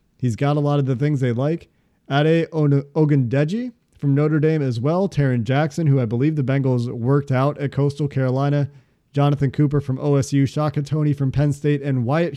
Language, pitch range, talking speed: English, 125-150 Hz, 190 wpm